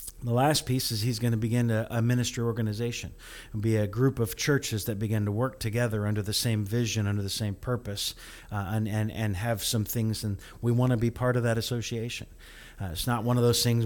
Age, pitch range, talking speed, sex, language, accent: 40-59, 105-120 Hz, 230 wpm, male, English, American